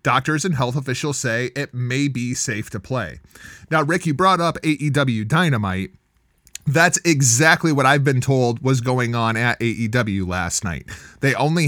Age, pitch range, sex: 30-49, 120-145 Hz, male